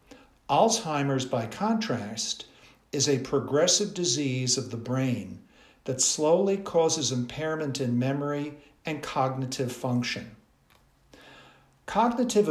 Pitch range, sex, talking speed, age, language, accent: 130-155 Hz, male, 95 wpm, 60-79, English, American